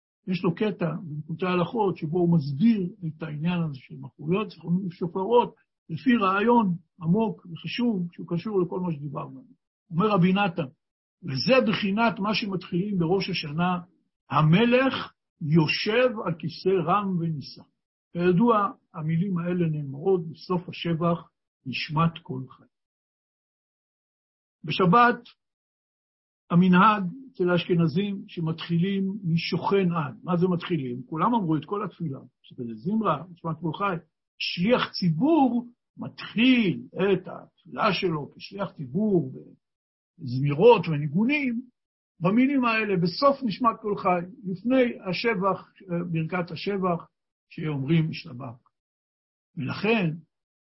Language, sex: Hebrew, male